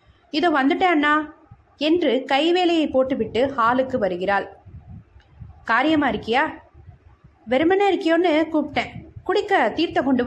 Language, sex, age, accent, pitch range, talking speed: Tamil, female, 20-39, native, 240-320 Hz, 90 wpm